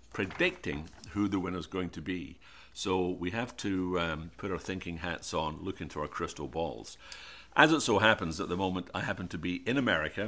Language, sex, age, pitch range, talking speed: English, male, 60-79, 80-95 Hz, 205 wpm